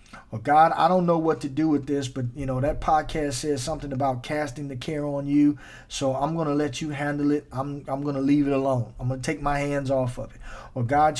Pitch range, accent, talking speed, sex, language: 135-170 Hz, American, 265 wpm, male, English